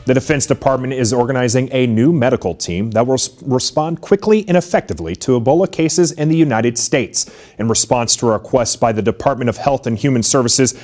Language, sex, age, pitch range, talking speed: English, male, 30-49, 115-155 Hz, 195 wpm